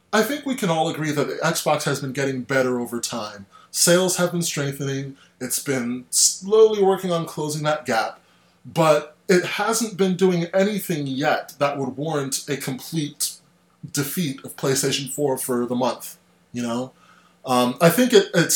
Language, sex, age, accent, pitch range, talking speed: English, male, 20-39, American, 130-175 Hz, 170 wpm